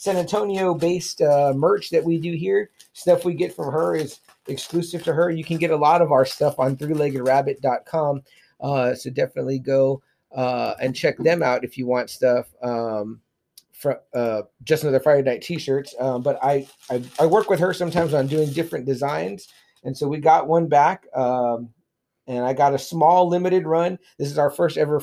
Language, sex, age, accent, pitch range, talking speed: English, male, 40-59, American, 130-170 Hz, 190 wpm